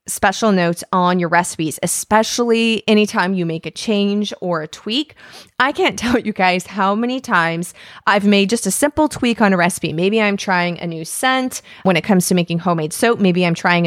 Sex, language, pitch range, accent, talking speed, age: female, English, 175-235 Hz, American, 205 wpm, 20-39